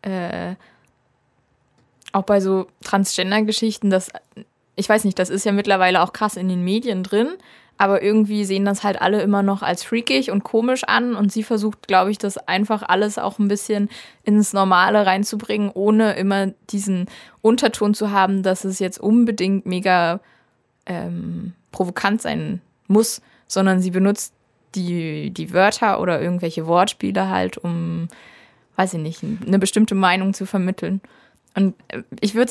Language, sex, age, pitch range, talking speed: German, female, 20-39, 185-220 Hz, 150 wpm